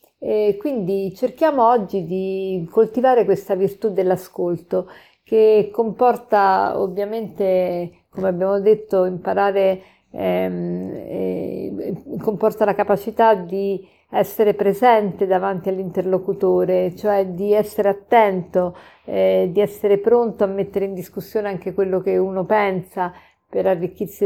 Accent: native